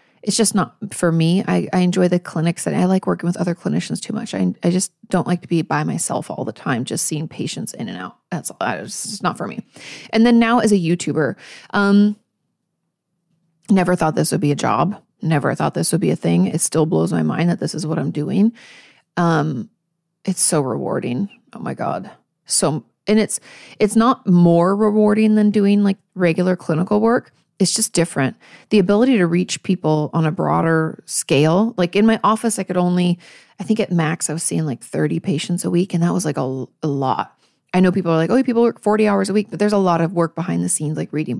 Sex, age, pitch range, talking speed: female, 30-49, 165-205 Hz, 225 wpm